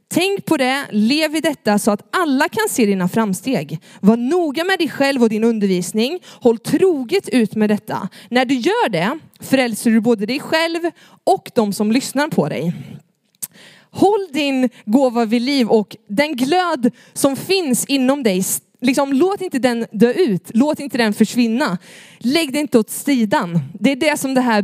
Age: 20-39